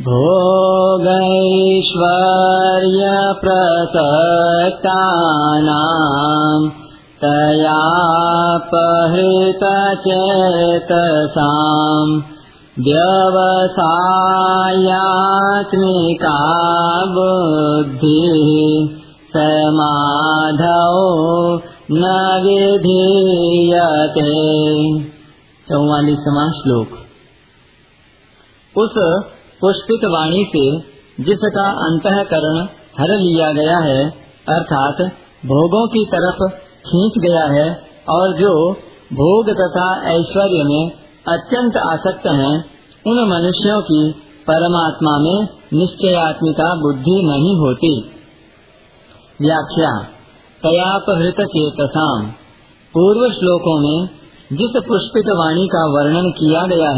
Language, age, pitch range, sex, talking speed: Hindi, 50-69, 155-185 Hz, male, 65 wpm